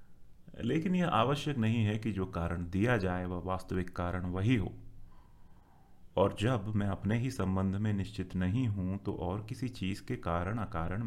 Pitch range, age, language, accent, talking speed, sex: 90-115 Hz, 30-49, Hindi, native, 180 wpm, male